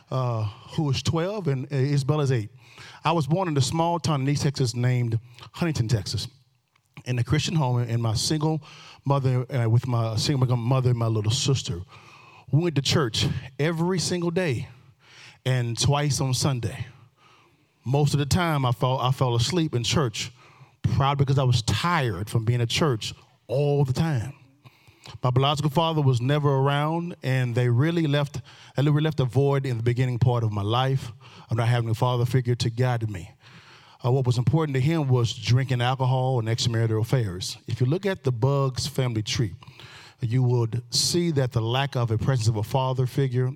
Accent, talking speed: American, 190 wpm